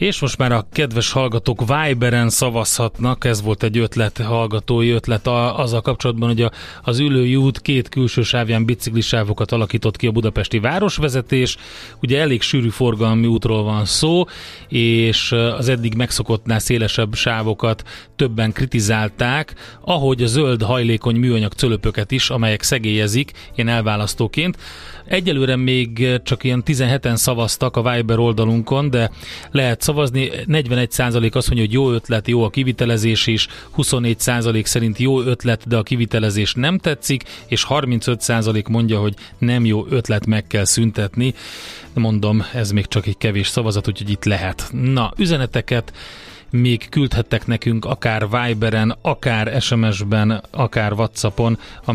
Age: 30-49